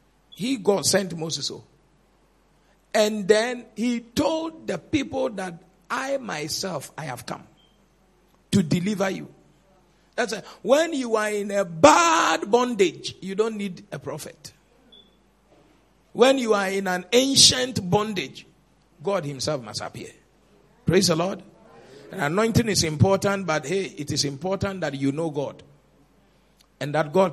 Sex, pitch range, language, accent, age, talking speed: male, 155-215 Hz, English, Nigerian, 50-69, 135 wpm